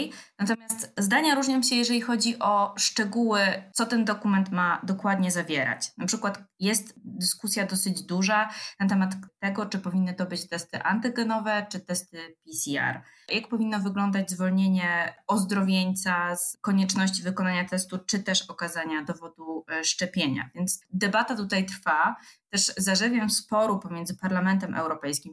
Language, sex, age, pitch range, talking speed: Polish, female, 20-39, 180-215 Hz, 135 wpm